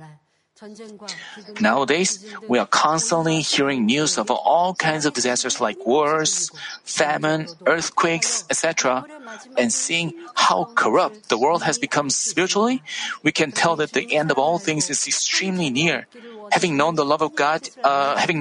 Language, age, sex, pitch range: Korean, 40-59, male, 150-200 Hz